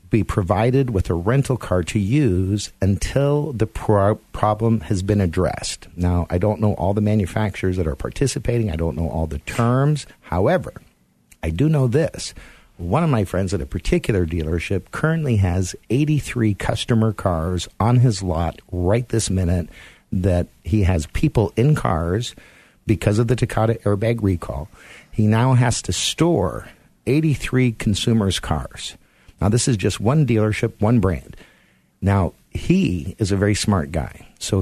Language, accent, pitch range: English, American, 90-120 Hz